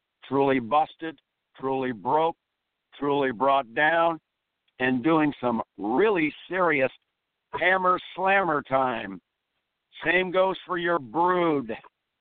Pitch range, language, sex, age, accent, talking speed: 135-180 Hz, English, male, 60-79, American, 100 wpm